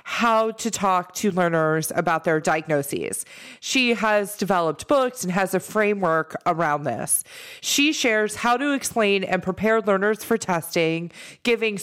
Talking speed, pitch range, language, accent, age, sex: 145 wpm, 185-230 Hz, English, American, 30-49, female